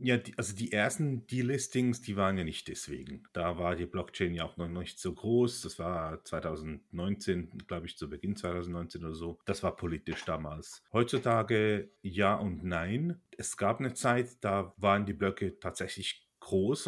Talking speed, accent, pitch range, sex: 170 wpm, German, 90-110 Hz, male